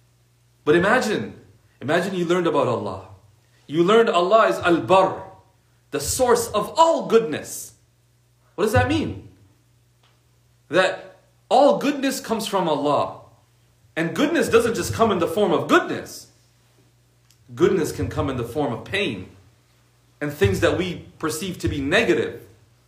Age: 40-59